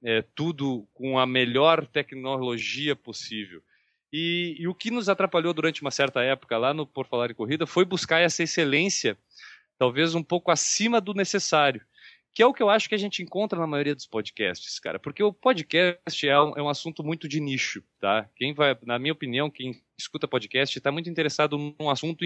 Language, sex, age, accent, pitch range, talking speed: Portuguese, male, 20-39, Brazilian, 140-180 Hz, 190 wpm